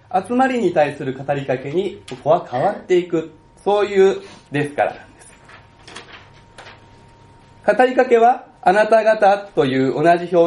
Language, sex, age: Japanese, male, 40-59